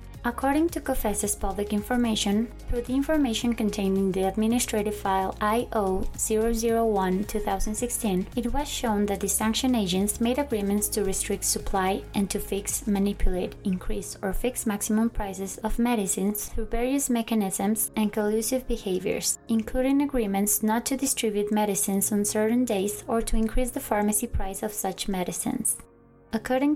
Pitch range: 200-230 Hz